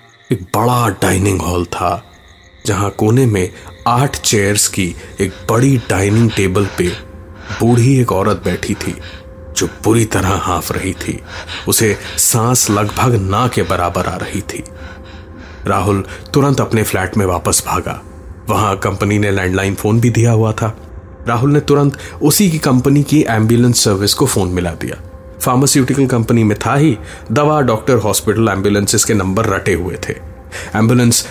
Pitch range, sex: 95-125 Hz, male